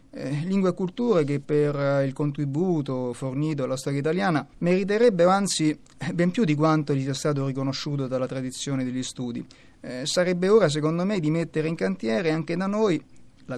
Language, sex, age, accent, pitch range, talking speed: Italian, male, 30-49, native, 135-165 Hz, 170 wpm